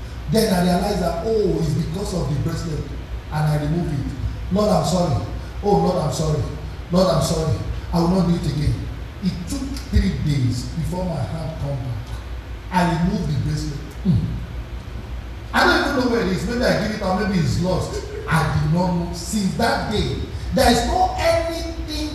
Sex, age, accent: male, 50-69, Nigerian